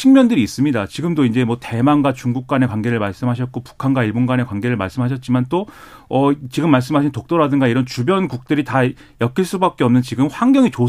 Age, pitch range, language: 40-59, 125-180 Hz, Korean